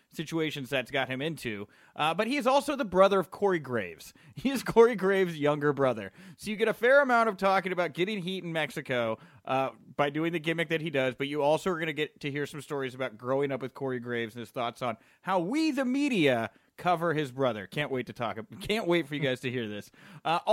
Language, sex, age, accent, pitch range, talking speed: English, male, 30-49, American, 135-190 Hz, 245 wpm